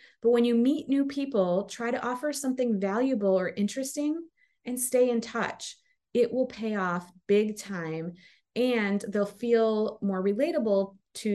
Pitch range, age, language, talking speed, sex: 195-250 Hz, 30-49, English, 155 wpm, female